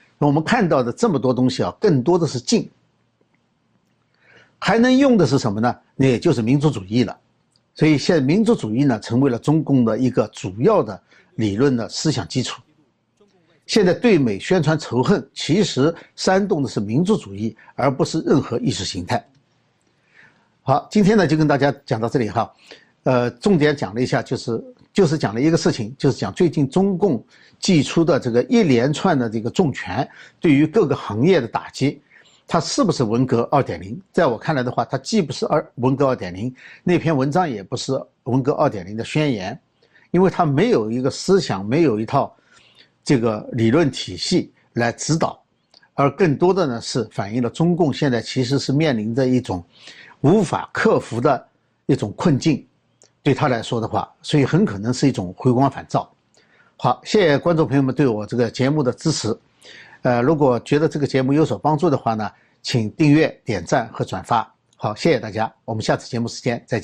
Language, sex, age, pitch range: Chinese, male, 50-69, 120-160 Hz